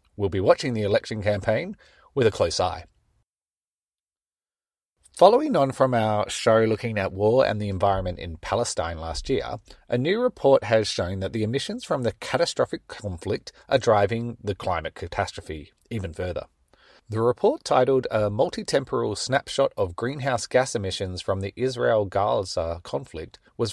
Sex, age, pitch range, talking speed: male, 30-49, 95-125 Hz, 150 wpm